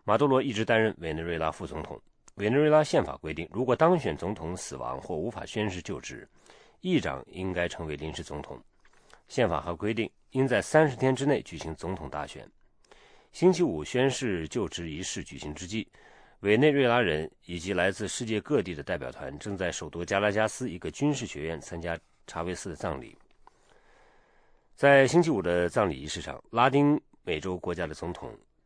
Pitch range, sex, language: 85-130 Hz, male, English